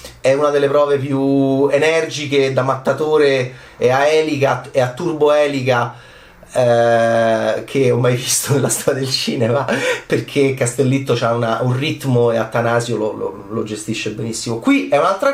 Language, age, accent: Italian, 30-49, native